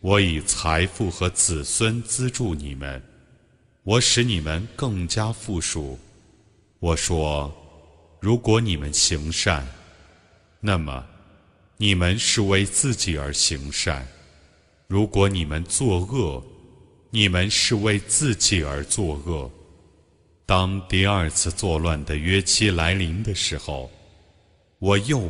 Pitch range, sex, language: 80-105 Hz, male, Chinese